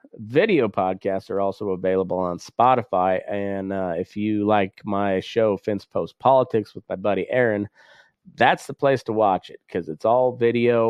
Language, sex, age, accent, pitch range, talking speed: English, male, 30-49, American, 95-120 Hz, 170 wpm